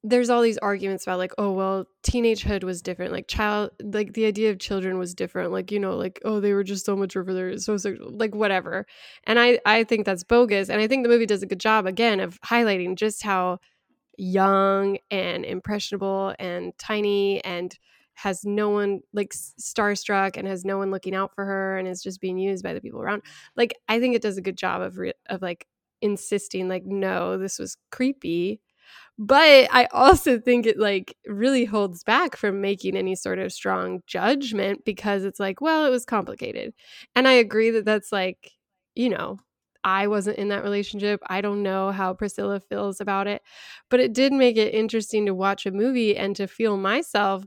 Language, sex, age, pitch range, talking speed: English, female, 10-29, 190-220 Hz, 200 wpm